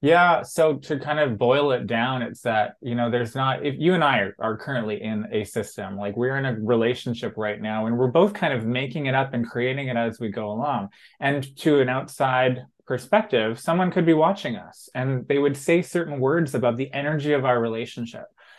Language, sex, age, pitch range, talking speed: English, male, 20-39, 120-150 Hz, 220 wpm